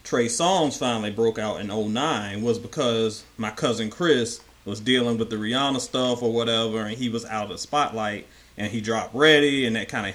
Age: 30-49